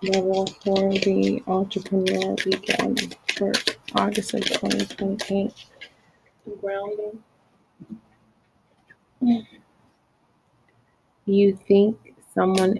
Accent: American